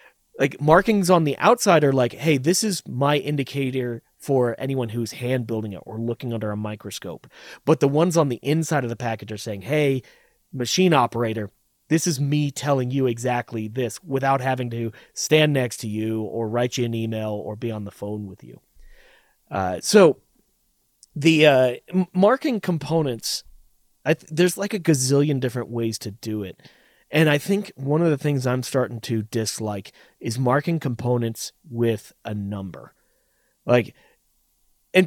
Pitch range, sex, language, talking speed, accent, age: 115-150 Hz, male, English, 165 wpm, American, 30-49